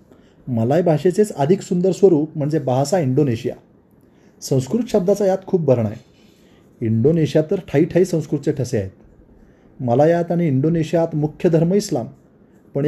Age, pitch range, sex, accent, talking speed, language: 30-49, 125-175 Hz, male, native, 130 wpm, Marathi